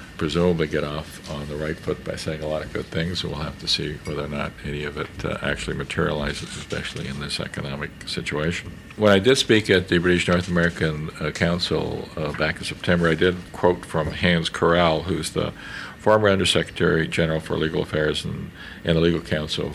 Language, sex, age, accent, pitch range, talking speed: English, male, 50-69, American, 75-90 Hz, 200 wpm